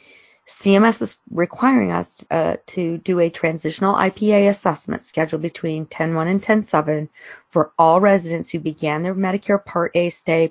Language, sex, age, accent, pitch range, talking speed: English, female, 40-59, American, 165-200 Hz, 150 wpm